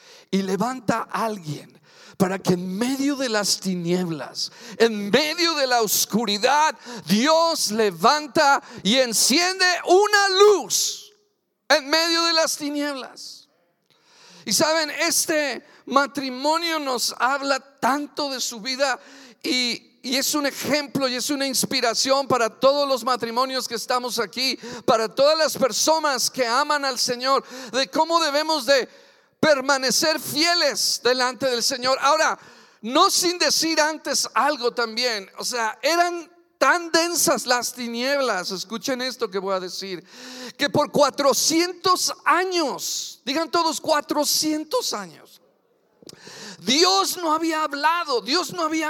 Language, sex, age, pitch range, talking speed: Spanish, male, 50-69, 235-315 Hz, 130 wpm